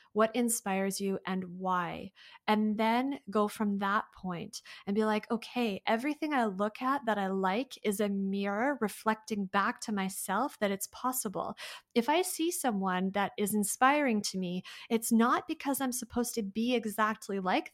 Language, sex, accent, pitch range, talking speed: English, female, American, 195-245 Hz, 170 wpm